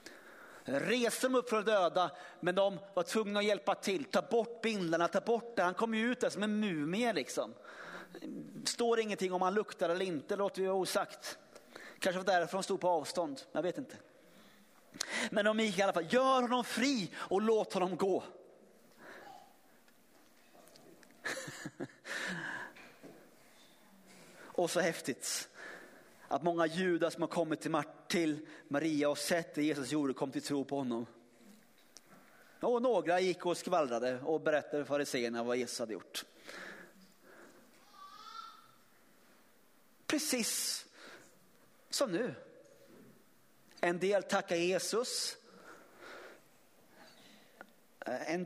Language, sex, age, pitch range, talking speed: Swedish, male, 30-49, 170-220 Hz, 130 wpm